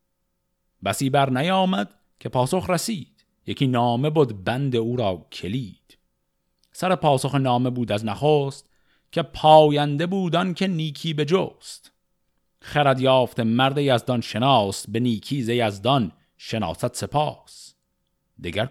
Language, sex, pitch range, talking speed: Persian, male, 105-150 Hz, 120 wpm